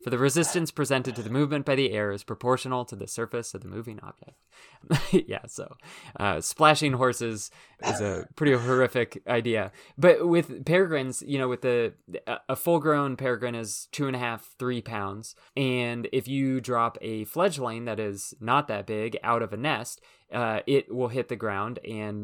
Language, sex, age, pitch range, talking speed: English, male, 20-39, 105-125 Hz, 185 wpm